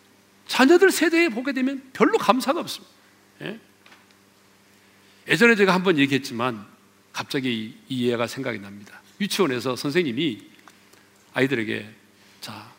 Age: 40-59